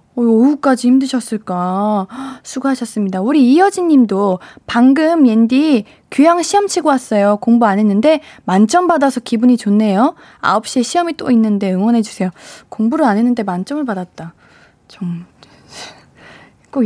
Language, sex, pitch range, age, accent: Korean, female, 210-295 Hz, 20-39, native